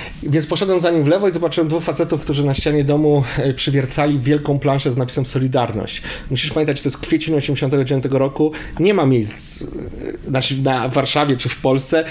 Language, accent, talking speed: Polish, native, 180 wpm